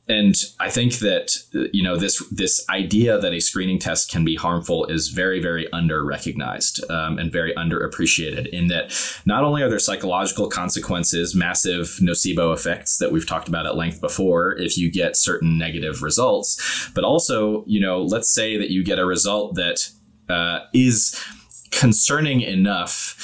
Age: 20-39